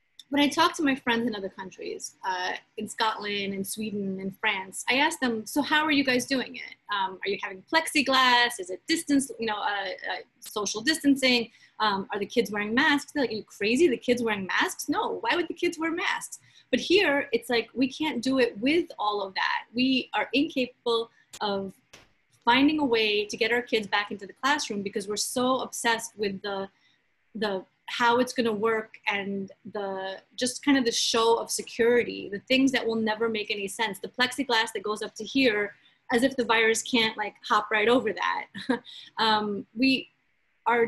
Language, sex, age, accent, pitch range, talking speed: English, female, 30-49, American, 210-265 Hz, 200 wpm